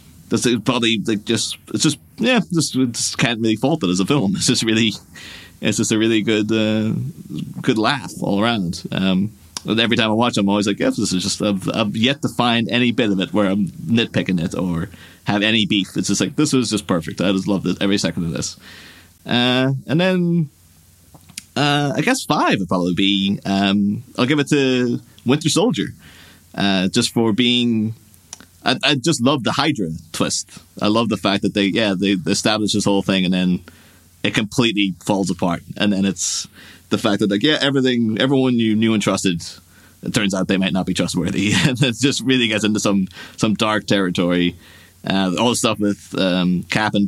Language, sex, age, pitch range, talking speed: English, male, 30-49, 95-120 Hz, 210 wpm